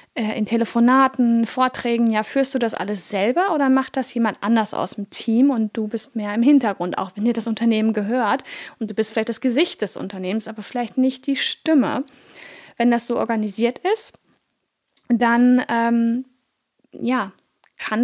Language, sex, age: German, female, 10-29